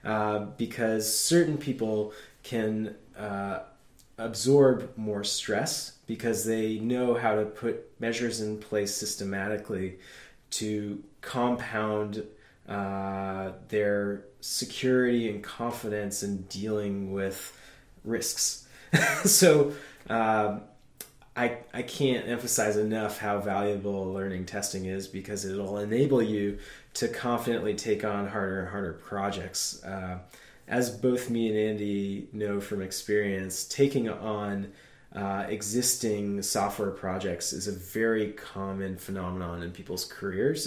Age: 20-39